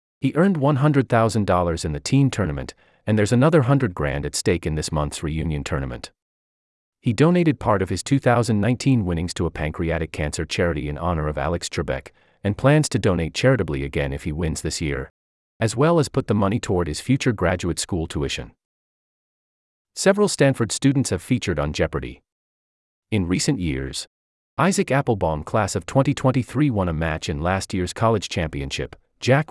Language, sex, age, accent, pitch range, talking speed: English, male, 40-59, American, 75-125 Hz, 170 wpm